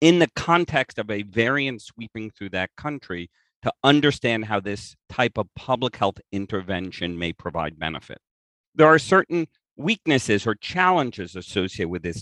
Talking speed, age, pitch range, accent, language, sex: 150 wpm, 50-69, 90-120 Hz, American, English, male